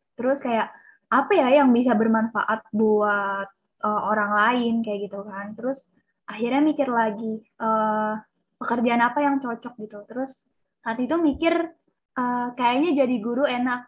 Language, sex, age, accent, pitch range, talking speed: Indonesian, female, 10-29, native, 225-255 Hz, 145 wpm